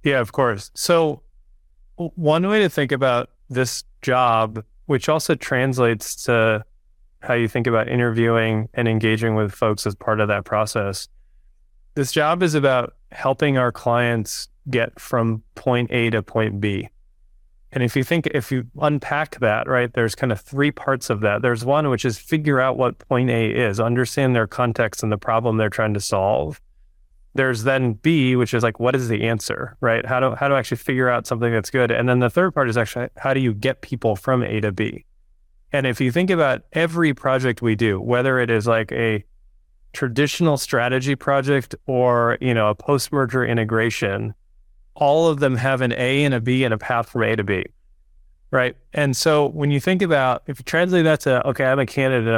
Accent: American